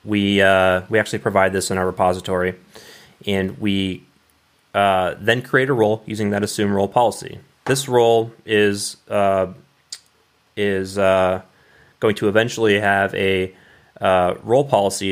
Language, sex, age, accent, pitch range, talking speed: English, male, 20-39, American, 95-110 Hz, 140 wpm